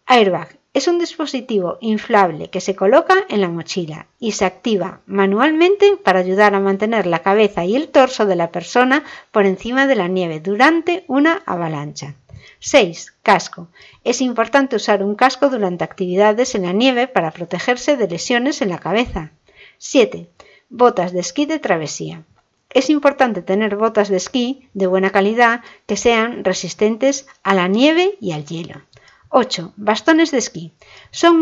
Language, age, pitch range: Spanish, 60-79, 185-260 Hz